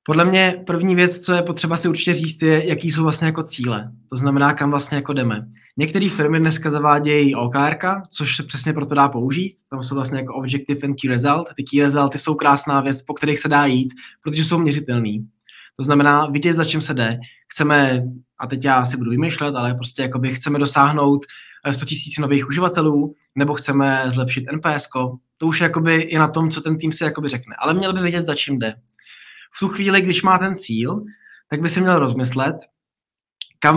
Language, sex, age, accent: Czech, male, 20-39, native